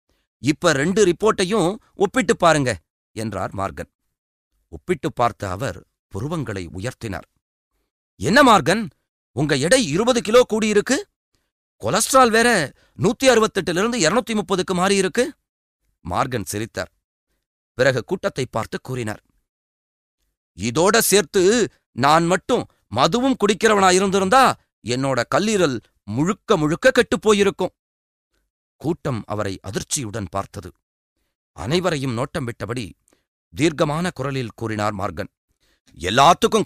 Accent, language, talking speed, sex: native, Tamil, 90 wpm, male